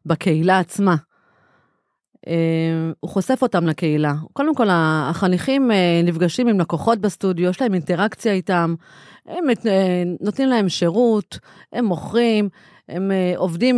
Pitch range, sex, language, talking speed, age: 185-230 Hz, female, Hebrew, 105 wpm, 30-49